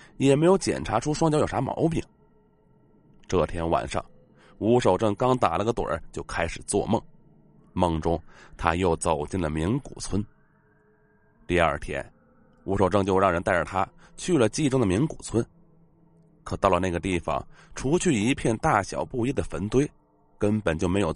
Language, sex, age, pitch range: Chinese, male, 30-49, 90-135 Hz